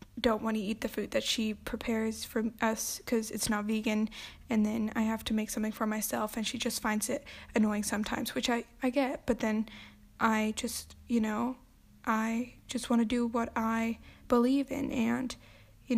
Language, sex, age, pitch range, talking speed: English, female, 10-29, 220-250 Hz, 195 wpm